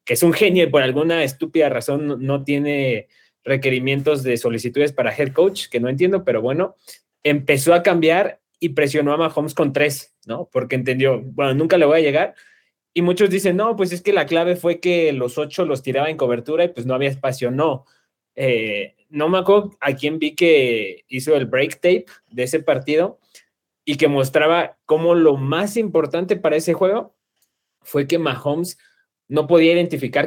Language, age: Spanish, 20-39